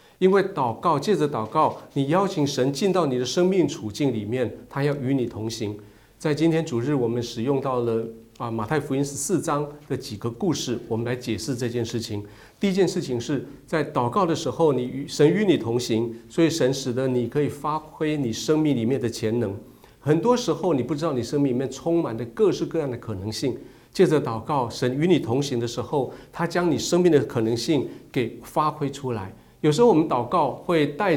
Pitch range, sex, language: 120-155 Hz, male, Chinese